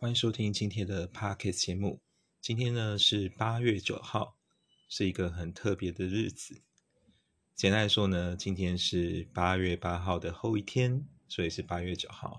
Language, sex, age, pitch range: Chinese, male, 30-49, 90-110 Hz